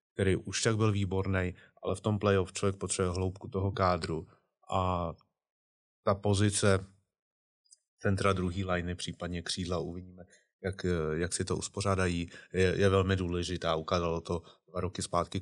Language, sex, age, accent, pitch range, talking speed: Czech, male, 30-49, native, 90-100 Hz, 145 wpm